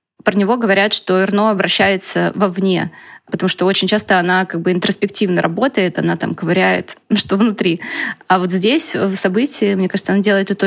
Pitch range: 180-205 Hz